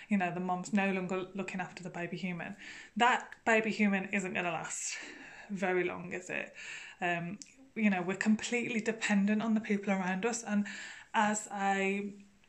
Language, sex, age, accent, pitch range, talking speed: English, female, 20-39, British, 190-220 Hz, 175 wpm